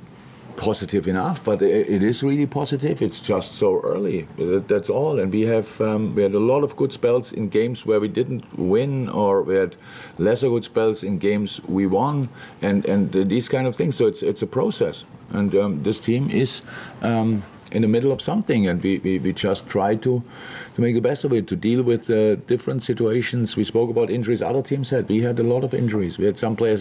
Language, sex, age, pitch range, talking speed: English, male, 50-69, 95-120 Hz, 220 wpm